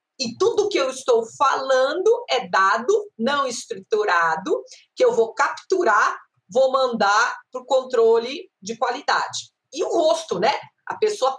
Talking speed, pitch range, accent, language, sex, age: 140 wpm, 230-385 Hz, Brazilian, Portuguese, female, 40-59